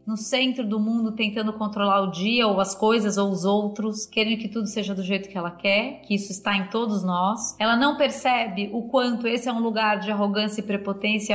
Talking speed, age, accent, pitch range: 220 wpm, 30-49, Brazilian, 200-245 Hz